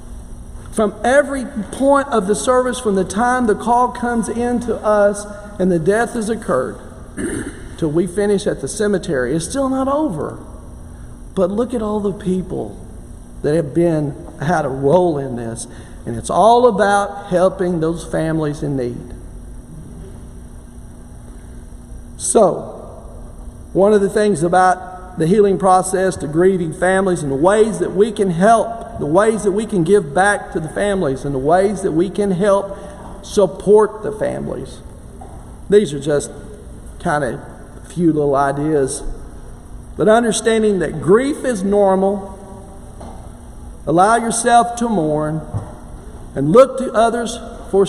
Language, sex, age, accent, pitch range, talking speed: English, male, 50-69, American, 150-215 Hz, 145 wpm